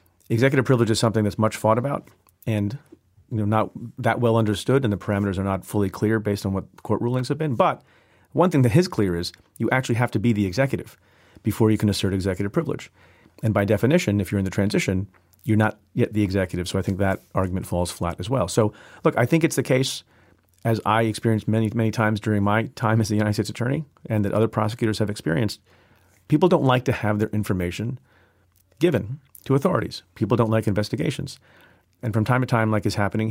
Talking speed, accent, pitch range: 215 wpm, American, 95-120 Hz